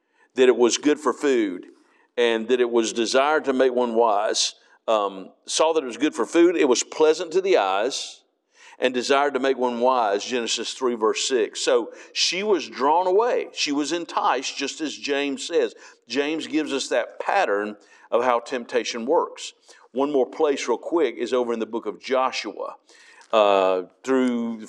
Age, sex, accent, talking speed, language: 50-69, male, American, 185 wpm, English